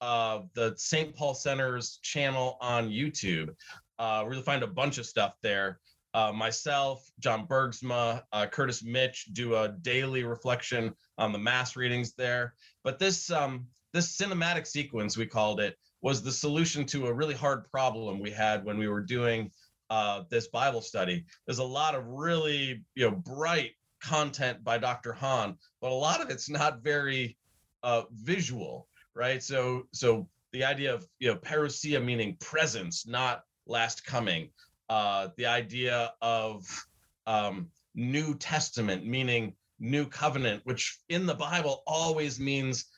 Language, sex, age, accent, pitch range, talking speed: English, male, 30-49, American, 115-145 Hz, 160 wpm